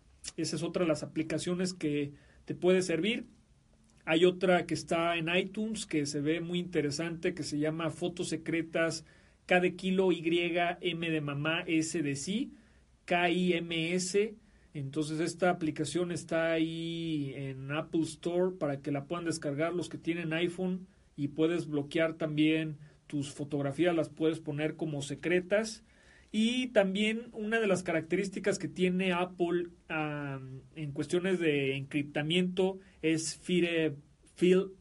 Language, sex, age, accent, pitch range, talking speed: Spanish, male, 40-59, Mexican, 150-180 Hz, 140 wpm